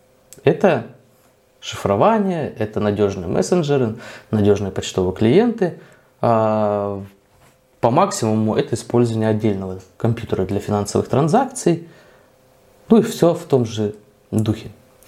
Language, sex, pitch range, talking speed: Russian, male, 110-140 Hz, 95 wpm